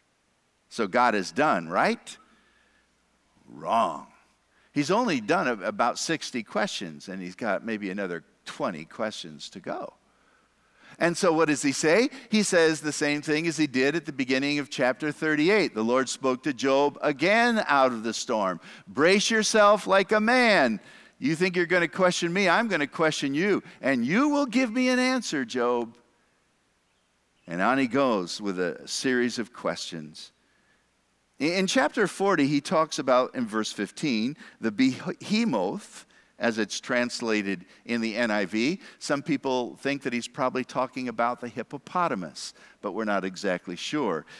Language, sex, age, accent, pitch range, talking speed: English, male, 50-69, American, 120-185 Hz, 155 wpm